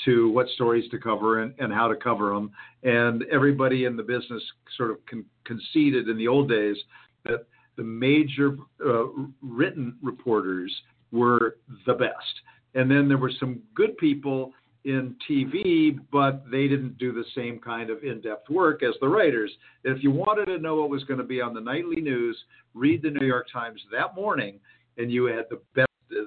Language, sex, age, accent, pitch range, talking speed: English, male, 50-69, American, 125-160 Hz, 185 wpm